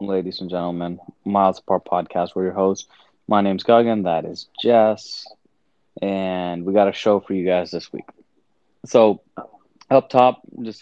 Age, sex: 20-39, male